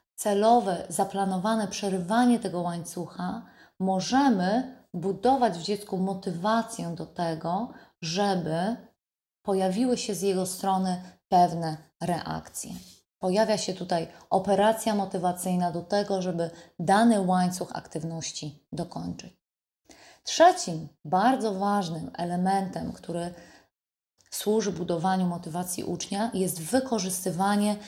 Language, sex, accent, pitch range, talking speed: Polish, female, native, 175-210 Hz, 95 wpm